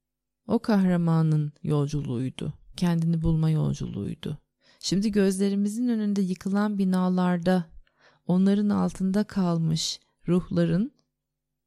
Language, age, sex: Turkish, 30-49, female